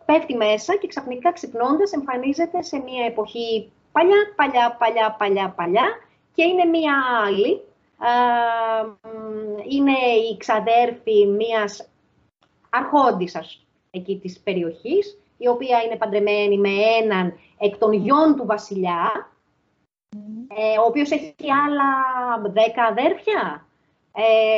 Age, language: 30-49, Greek